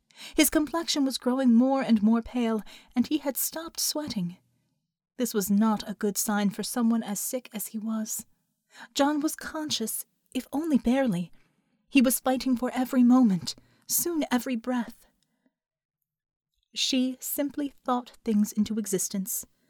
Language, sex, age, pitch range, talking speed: English, female, 30-49, 210-260 Hz, 145 wpm